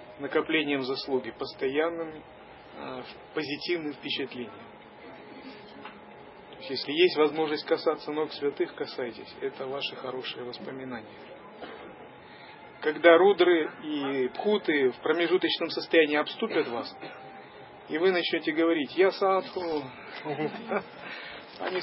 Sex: male